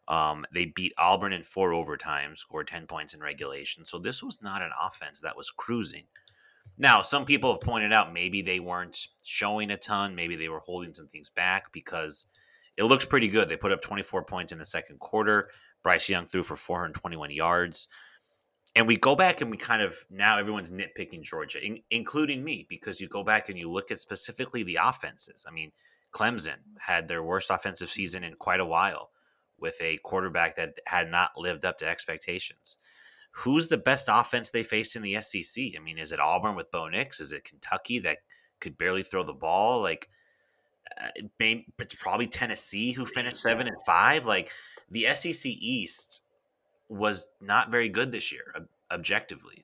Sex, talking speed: male, 185 wpm